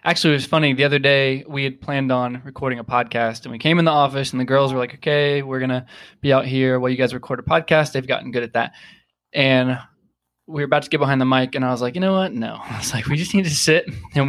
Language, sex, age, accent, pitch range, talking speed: English, male, 20-39, American, 130-155 Hz, 290 wpm